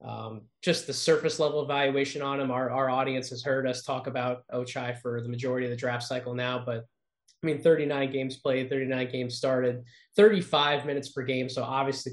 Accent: American